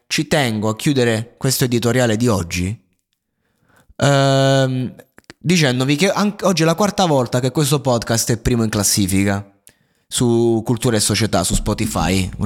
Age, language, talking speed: 20-39, Italian, 150 wpm